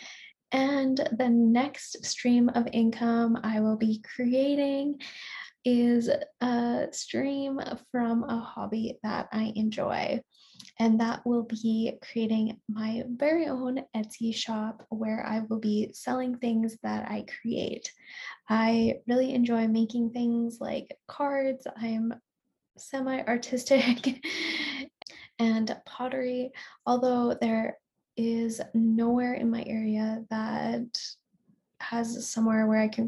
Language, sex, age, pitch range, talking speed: English, female, 10-29, 225-255 Hz, 110 wpm